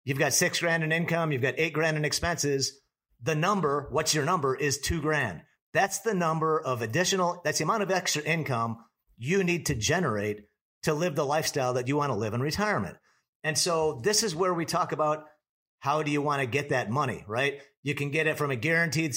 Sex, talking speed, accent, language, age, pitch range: male, 220 wpm, American, English, 40-59, 135-165 Hz